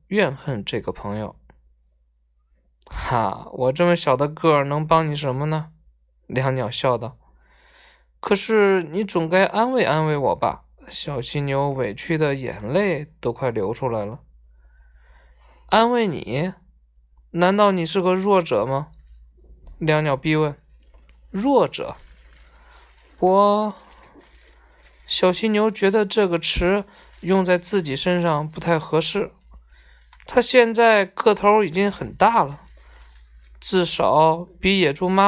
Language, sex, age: Chinese, male, 20-39